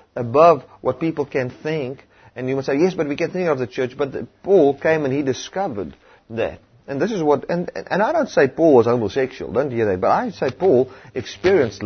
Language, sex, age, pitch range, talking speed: English, male, 30-49, 110-155 Hz, 225 wpm